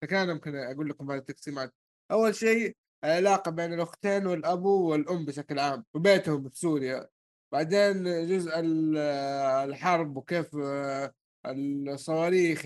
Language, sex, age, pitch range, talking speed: Arabic, male, 20-39, 150-180 Hz, 105 wpm